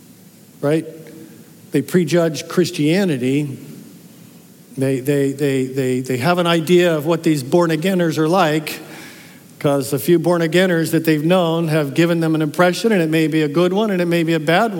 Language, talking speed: English, 175 wpm